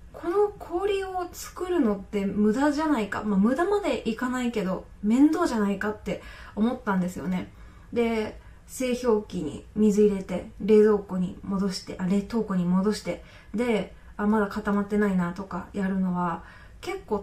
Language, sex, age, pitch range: Japanese, female, 20-39, 205-285 Hz